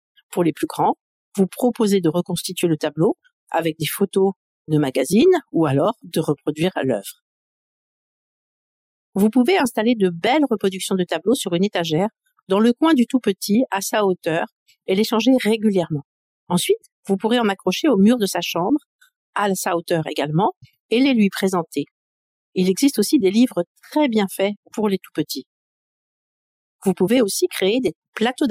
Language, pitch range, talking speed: French, 165-230 Hz, 170 wpm